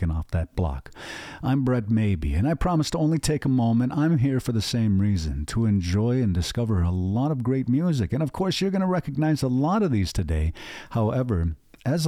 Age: 50-69